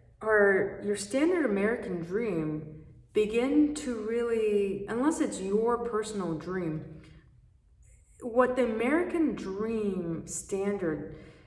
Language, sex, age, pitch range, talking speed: English, female, 30-49, 155-210 Hz, 95 wpm